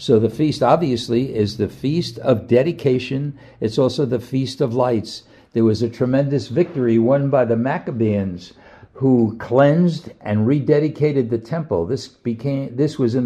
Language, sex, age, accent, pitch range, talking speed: English, male, 60-79, American, 115-145 Hz, 160 wpm